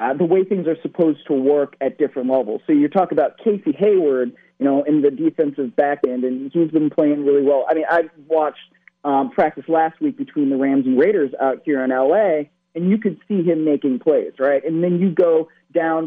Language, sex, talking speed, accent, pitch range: English, male, 225 wpm, American, 145-195 Hz